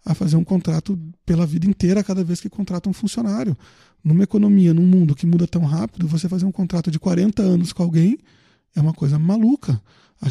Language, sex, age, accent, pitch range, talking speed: Portuguese, male, 20-39, Brazilian, 155-195 Hz, 205 wpm